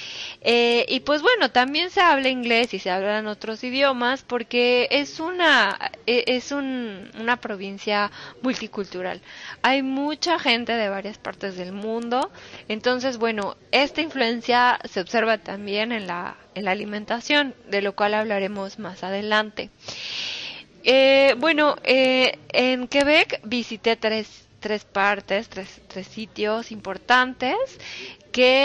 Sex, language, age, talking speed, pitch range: female, Spanish, 20-39, 130 wpm, 210-260 Hz